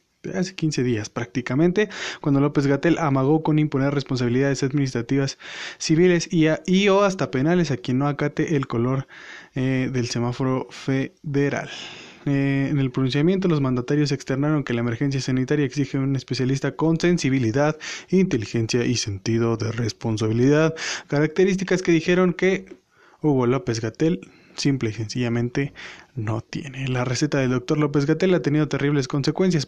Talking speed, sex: 145 wpm, male